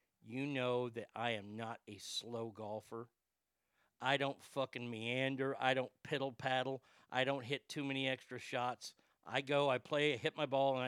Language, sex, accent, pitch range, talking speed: English, male, American, 120-170 Hz, 180 wpm